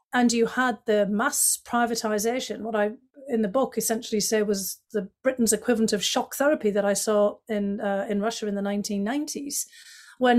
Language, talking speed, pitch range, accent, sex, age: English, 180 wpm, 210-245 Hz, British, female, 40-59